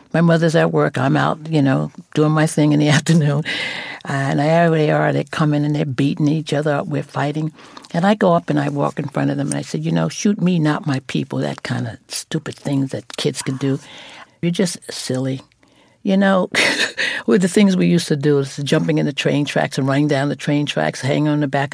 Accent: American